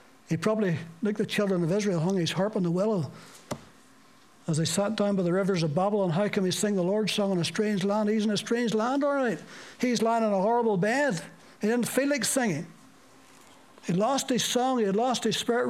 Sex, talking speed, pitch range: male, 225 wpm, 175-230 Hz